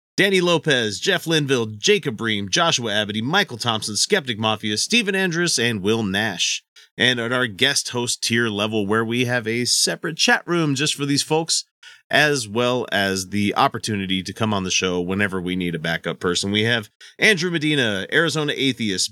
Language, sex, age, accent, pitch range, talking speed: English, male, 30-49, American, 100-135 Hz, 180 wpm